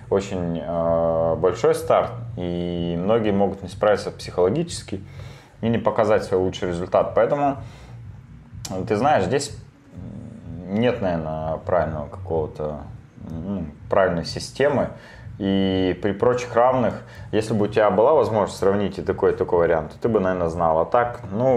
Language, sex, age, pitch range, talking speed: Russian, male, 20-39, 85-115 Hz, 140 wpm